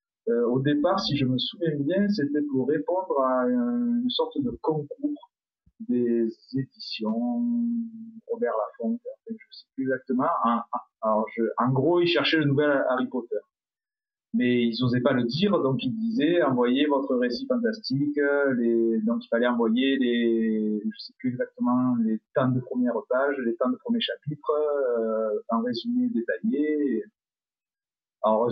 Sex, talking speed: male, 160 wpm